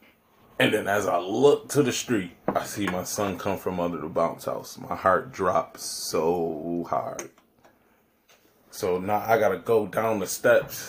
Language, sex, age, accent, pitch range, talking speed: English, male, 20-39, American, 95-115 Hz, 170 wpm